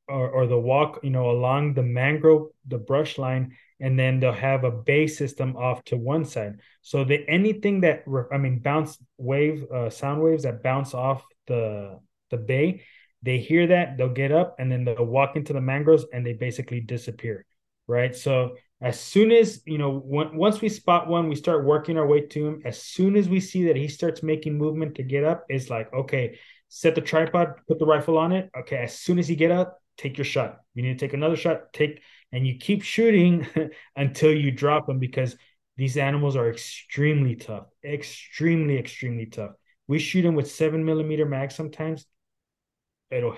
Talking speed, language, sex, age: 195 wpm, English, male, 20-39